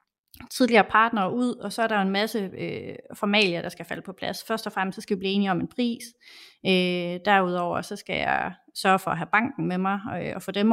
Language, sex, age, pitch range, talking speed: English, female, 30-49, 180-205 Hz, 250 wpm